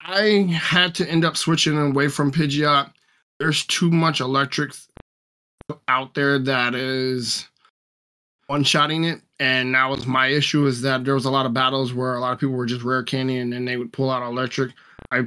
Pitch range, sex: 125-145 Hz, male